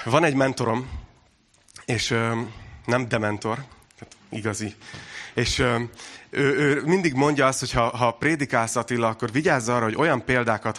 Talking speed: 150 wpm